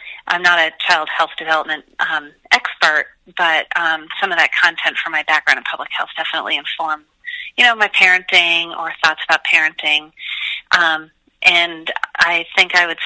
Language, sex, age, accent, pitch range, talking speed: English, female, 40-59, American, 165-200 Hz, 165 wpm